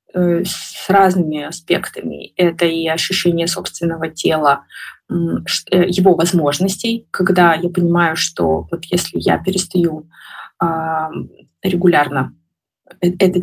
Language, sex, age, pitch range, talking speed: Russian, female, 20-39, 170-185 Hz, 90 wpm